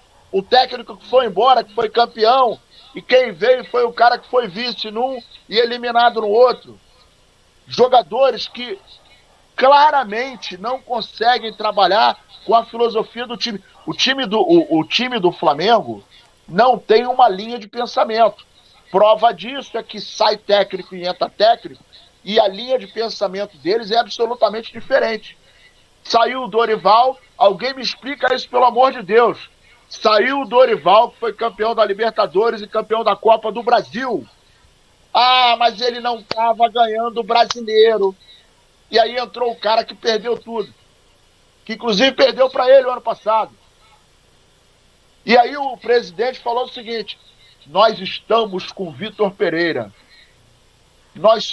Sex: male